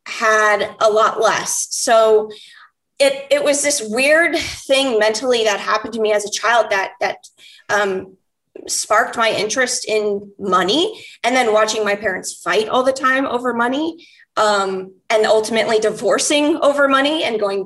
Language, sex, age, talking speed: English, female, 20-39, 155 wpm